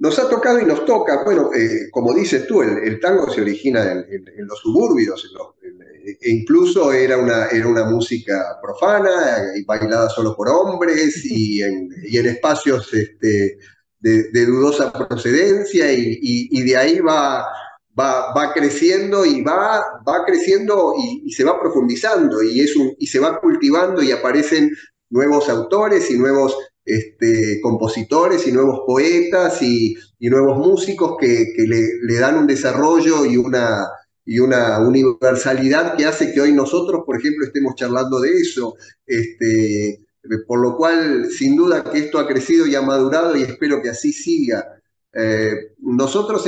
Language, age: Spanish, 30-49